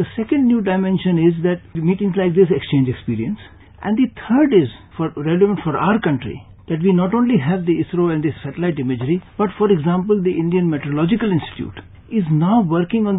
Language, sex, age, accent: English, male, 60-79, Indian